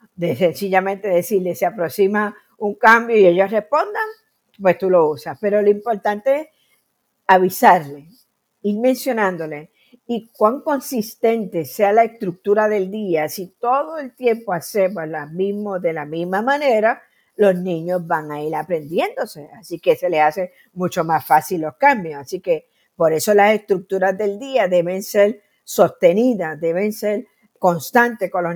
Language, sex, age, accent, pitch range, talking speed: English, female, 50-69, American, 175-230 Hz, 150 wpm